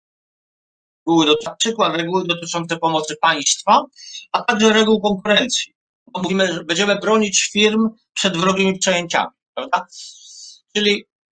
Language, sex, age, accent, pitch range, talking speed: Polish, male, 50-69, native, 165-210 Hz, 105 wpm